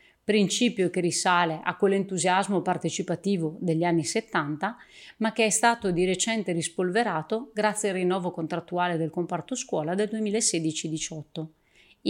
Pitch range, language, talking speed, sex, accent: 165-210 Hz, Italian, 125 wpm, female, native